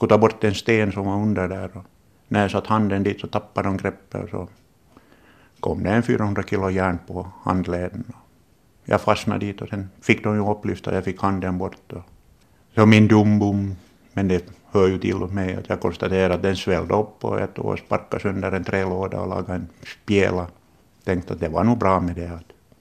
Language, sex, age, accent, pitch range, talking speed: Swedish, male, 60-79, Finnish, 90-105 Hz, 205 wpm